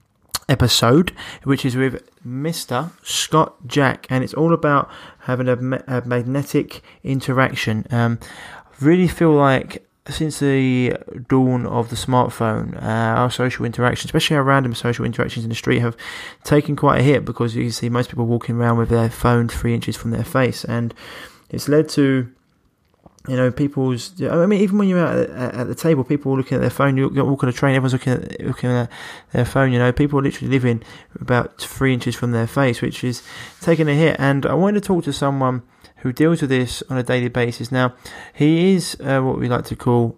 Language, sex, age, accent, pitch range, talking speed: English, male, 20-39, British, 120-140 Hz, 200 wpm